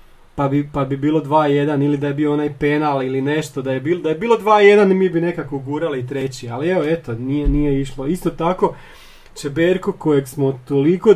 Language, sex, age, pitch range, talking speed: Croatian, male, 30-49, 130-170 Hz, 210 wpm